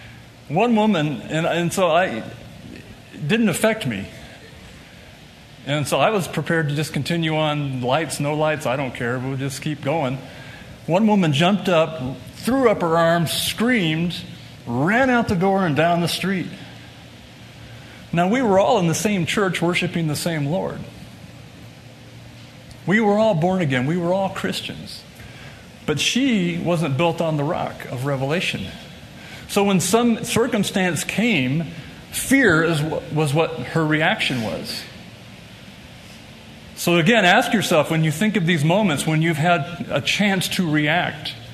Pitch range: 155-210 Hz